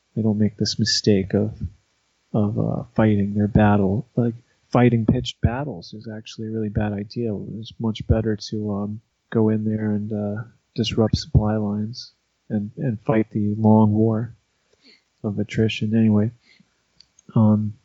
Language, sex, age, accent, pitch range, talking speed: English, male, 40-59, American, 110-125 Hz, 150 wpm